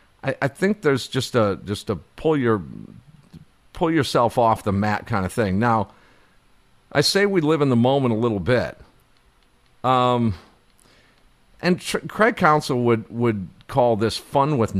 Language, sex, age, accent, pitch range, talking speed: English, male, 50-69, American, 105-150 Hz, 160 wpm